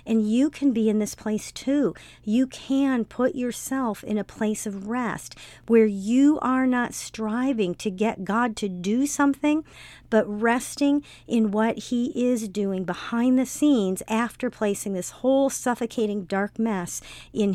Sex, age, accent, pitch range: female, 50-69, American, 205-240 Hz